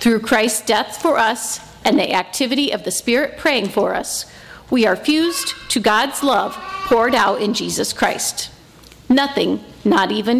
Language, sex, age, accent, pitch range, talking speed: English, female, 50-69, American, 210-270 Hz, 160 wpm